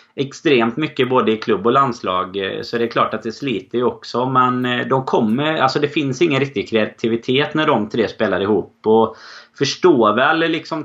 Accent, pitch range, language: native, 105-130 Hz, Swedish